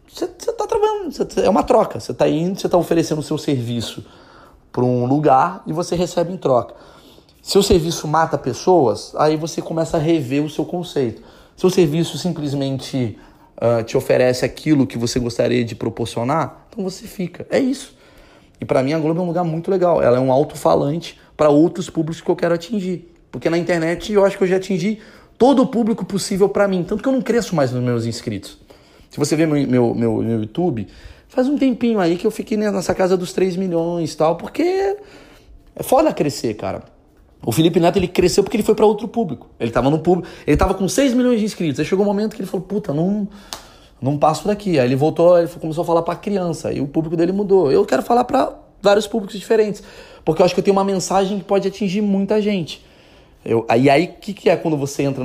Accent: Brazilian